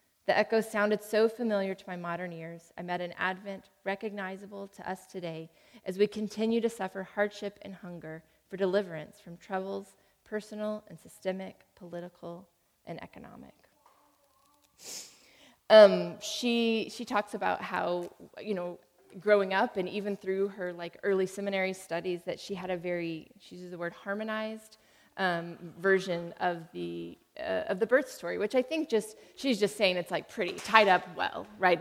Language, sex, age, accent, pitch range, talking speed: English, female, 20-39, American, 180-215 Hz, 160 wpm